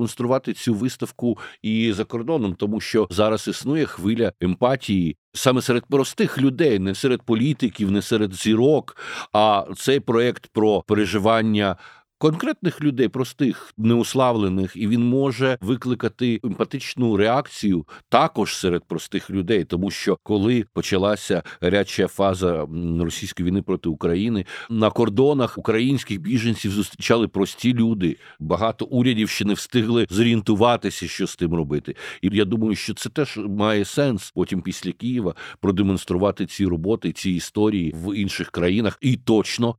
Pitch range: 95-120 Hz